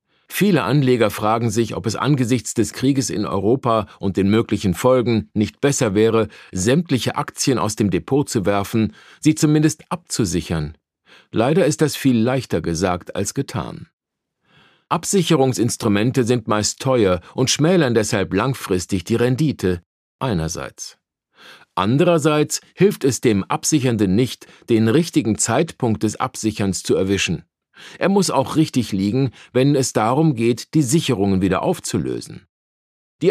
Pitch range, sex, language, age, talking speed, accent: 105-145 Hz, male, German, 50-69, 135 wpm, German